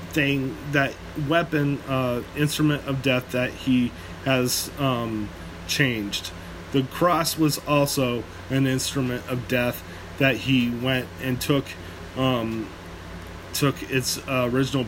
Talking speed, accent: 120 wpm, American